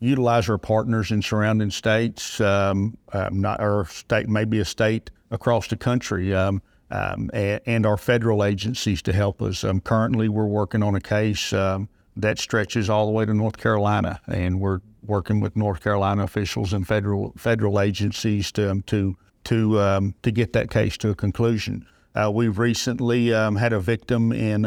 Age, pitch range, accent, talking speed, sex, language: 50-69, 100-110 Hz, American, 180 wpm, male, English